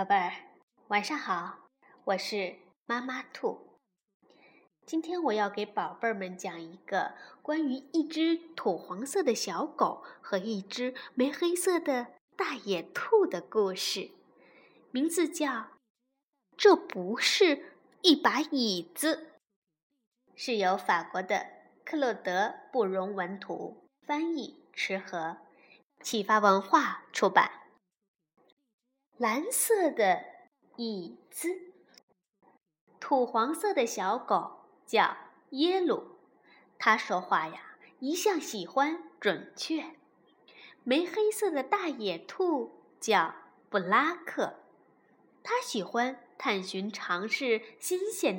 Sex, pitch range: female, 205-335 Hz